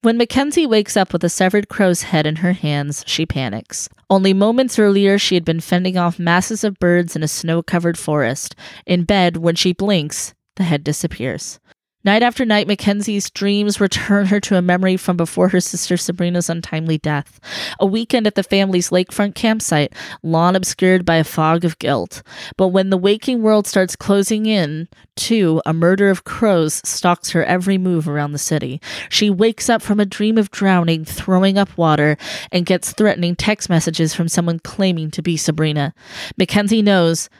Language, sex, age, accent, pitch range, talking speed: English, female, 20-39, American, 165-200 Hz, 180 wpm